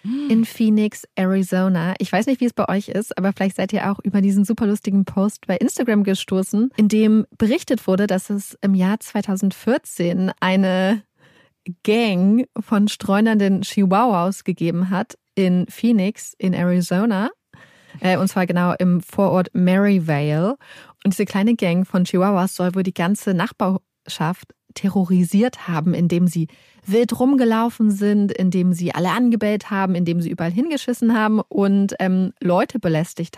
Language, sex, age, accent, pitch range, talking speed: German, female, 20-39, German, 185-220 Hz, 145 wpm